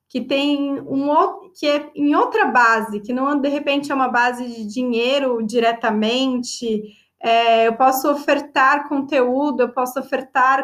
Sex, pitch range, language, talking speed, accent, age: female, 245-295 Hz, Portuguese, 145 wpm, Brazilian, 20-39